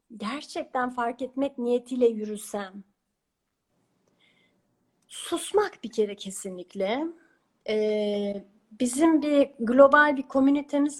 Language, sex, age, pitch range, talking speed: Turkish, female, 40-59, 220-290 Hz, 80 wpm